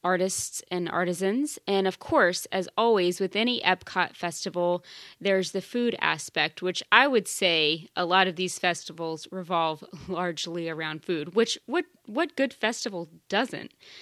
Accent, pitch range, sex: American, 175-220 Hz, female